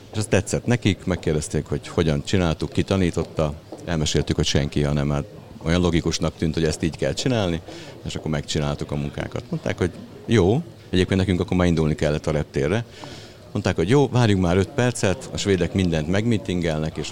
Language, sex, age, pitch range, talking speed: Hungarian, male, 60-79, 75-100 Hz, 170 wpm